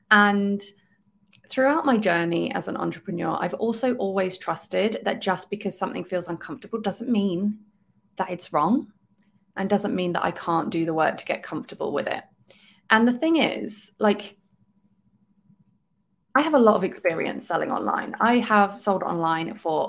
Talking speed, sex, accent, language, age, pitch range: 165 wpm, female, British, English, 20-39, 180-215 Hz